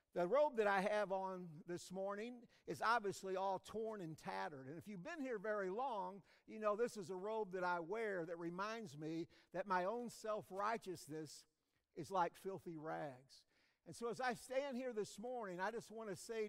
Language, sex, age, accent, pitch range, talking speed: English, male, 50-69, American, 175-230 Hz, 195 wpm